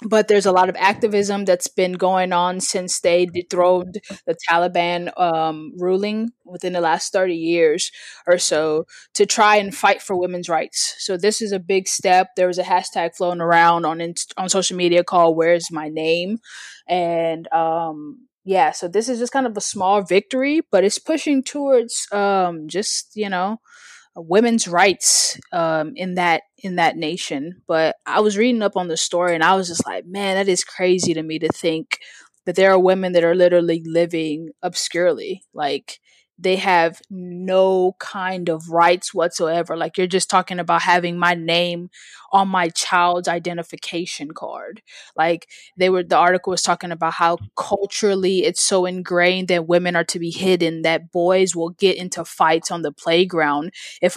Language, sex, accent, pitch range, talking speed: English, female, American, 170-195 Hz, 175 wpm